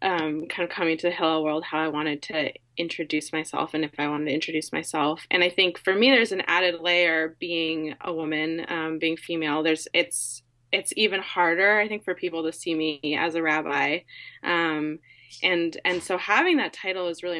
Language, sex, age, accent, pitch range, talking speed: English, female, 20-39, American, 160-190 Hz, 205 wpm